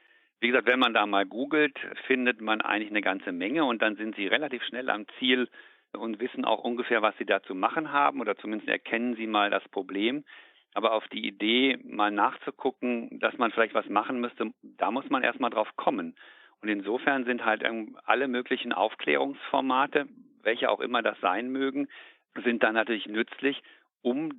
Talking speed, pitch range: 185 wpm, 115-140 Hz